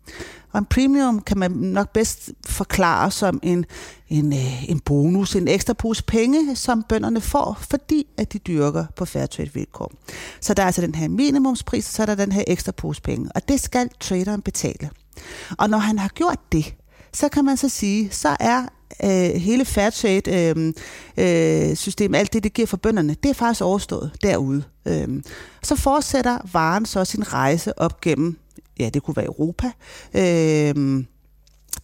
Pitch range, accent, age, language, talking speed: 170-230 Hz, native, 30-49, Danish, 170 wpm